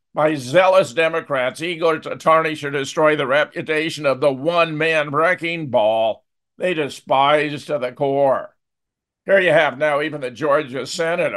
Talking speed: 150 wpm